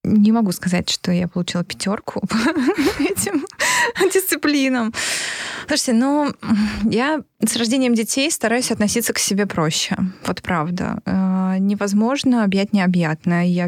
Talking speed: 115 wpm